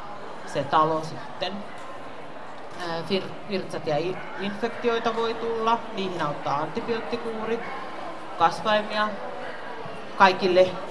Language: Finnish